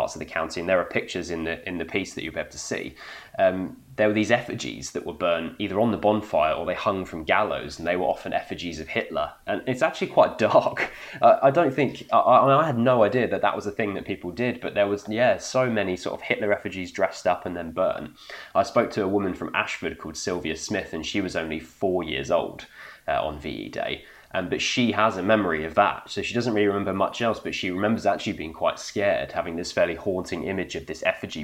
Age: 20-39